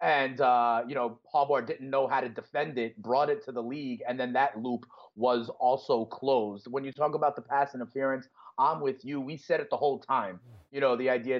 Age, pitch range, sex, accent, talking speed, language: 30-49, 125-145 Hz, male, American, 225 wpm, English